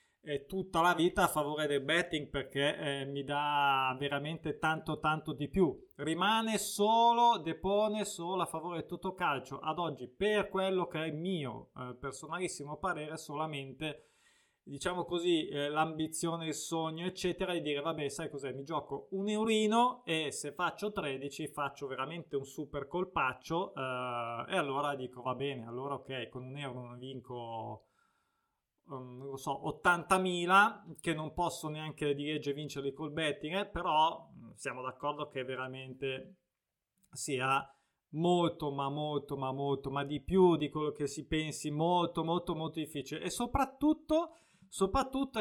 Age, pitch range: 20-39, 140-185 Hz